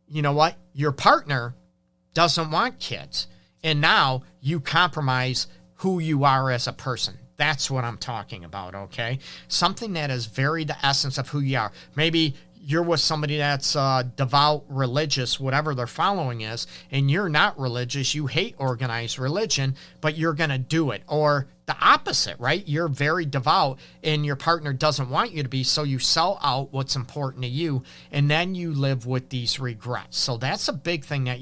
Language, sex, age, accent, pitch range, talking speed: English, male, 40-59, American, 125-150 Hz, 180 wpm